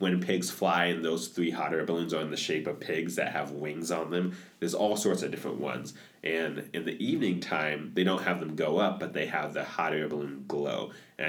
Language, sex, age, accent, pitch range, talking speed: English, male, 30-49, American, 75-90 Hz, 245 wpm